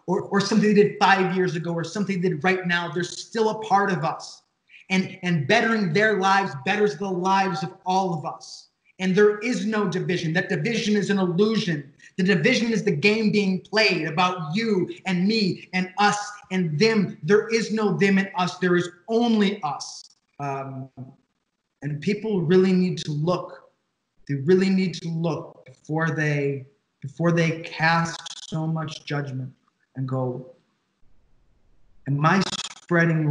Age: 20-39